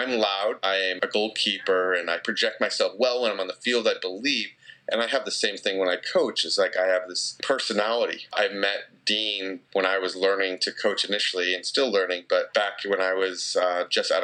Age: 30-49